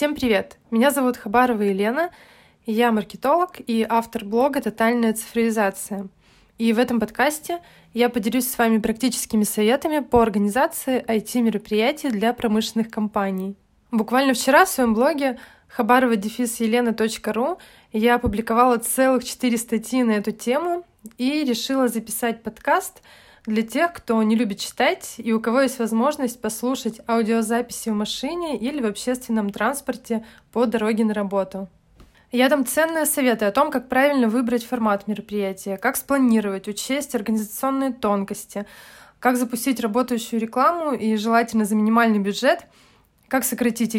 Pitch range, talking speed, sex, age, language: 220-260 Hz, 135 wpm, female, 20-39, Russian